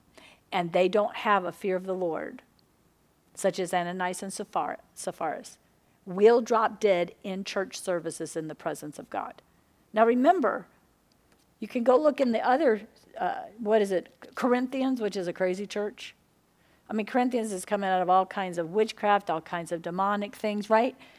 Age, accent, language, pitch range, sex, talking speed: 50-69, American, English, 185-235 Hz, female, 175 wpm